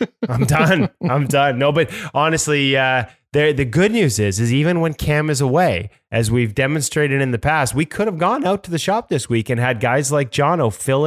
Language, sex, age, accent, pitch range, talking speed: English, male, 20-39, American, 115-140 Hz, 220 wpm